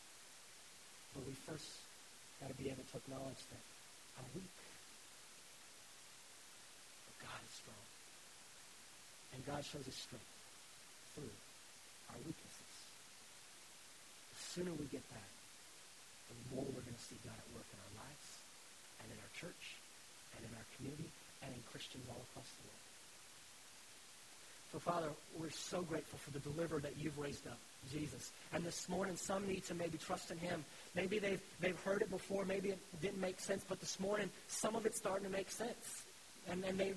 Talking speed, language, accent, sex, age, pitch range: 165 wpm, English, American, male, 40-59, 145-195 Hz